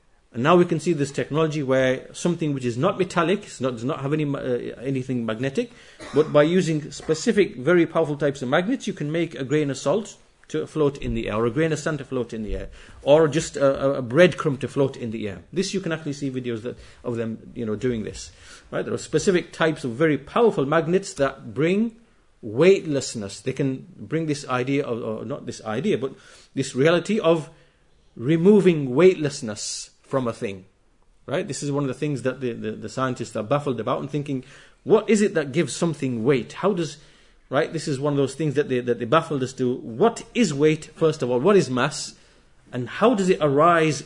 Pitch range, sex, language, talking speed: 125-165 Hz, male, English, 220 wpm